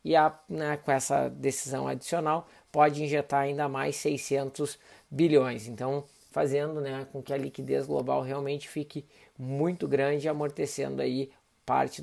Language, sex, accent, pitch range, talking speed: Portuguese, male, Brazilian, 125-145 Hz, 140 wpm